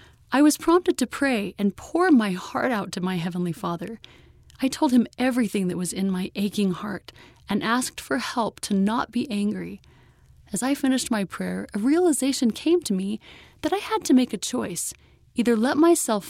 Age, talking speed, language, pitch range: 30-49, 190 wpm, English, 190-245 Hz